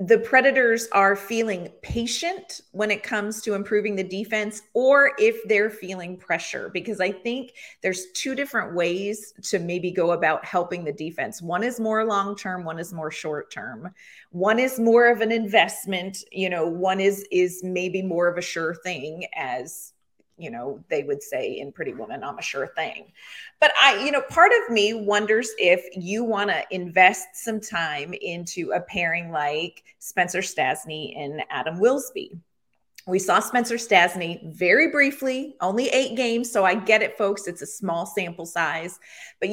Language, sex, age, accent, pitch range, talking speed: English, female, 30-49, American, 175-225 Hz, 175 wpm